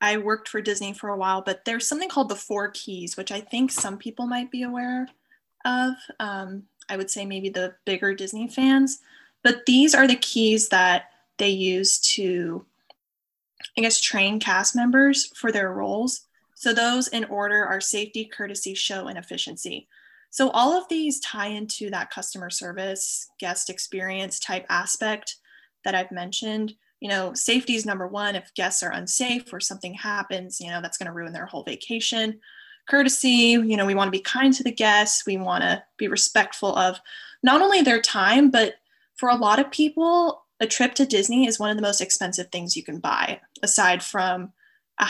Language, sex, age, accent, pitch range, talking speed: English, female, 10-29, American, 195-250 Hz, 185 wpm